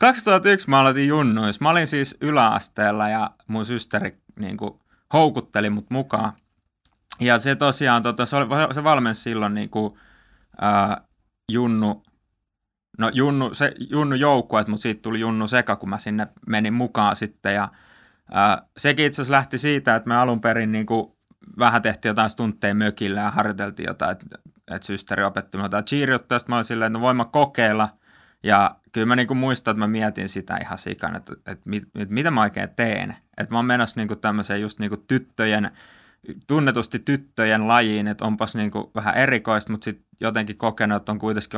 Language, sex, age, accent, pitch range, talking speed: Finnish, male, 20-39, native, 105-130 Hz, 175 wpm